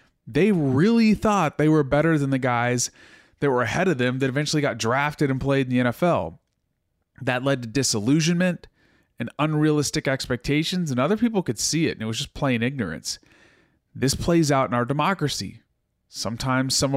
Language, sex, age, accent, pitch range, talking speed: English, male, 30-49, American, 125-170 Hz, 175 wpm